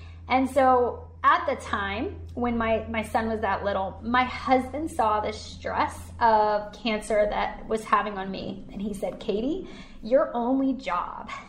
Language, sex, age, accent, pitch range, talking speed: English, female, 20-39, American, 205-245 Hz, 160 wpm